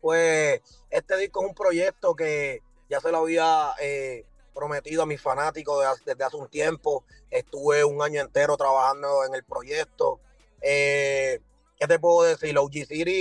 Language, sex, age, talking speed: Spanish, male, 30-49, 165 wpm